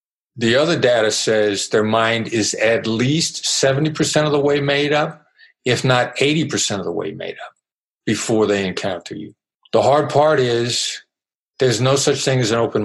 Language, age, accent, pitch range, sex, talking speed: English, 50-69, American, 110-140 Hz, male, 175 wpm